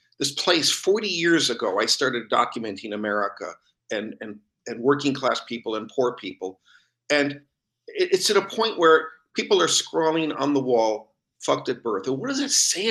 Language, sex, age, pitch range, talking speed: English, male, 50-69, 120-160 Hz, 170 wpm